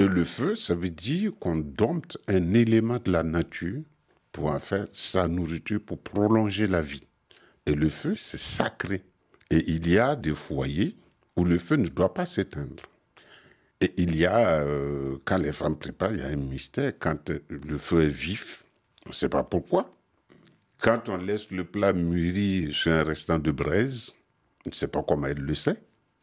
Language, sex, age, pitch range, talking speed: French, male, 60-79, 75-105 Hz, 190 wpm